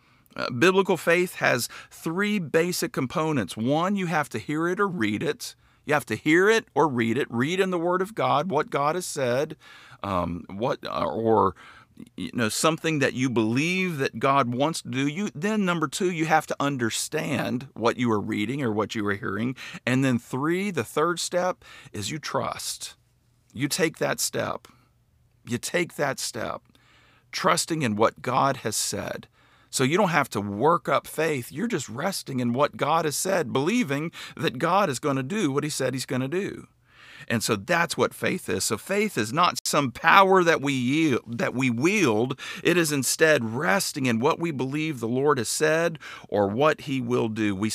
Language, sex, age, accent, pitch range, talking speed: English, male, 50-69, American, 120-170 Hz, 190 wpm